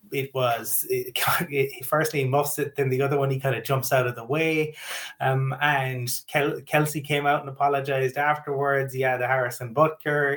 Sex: male